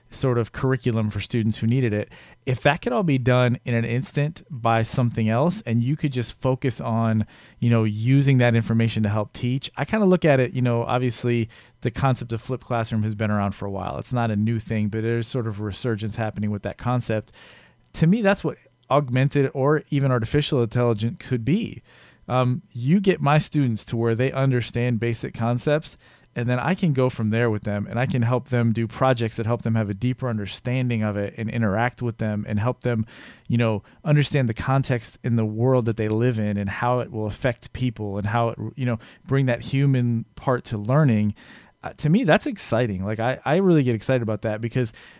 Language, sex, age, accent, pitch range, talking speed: English, male, 40-59, American, 110-130 Hz, 220 wpm